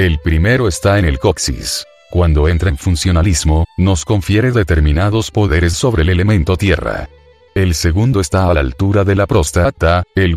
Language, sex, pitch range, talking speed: Spanish, male, 85-100 Hz, 160 wpm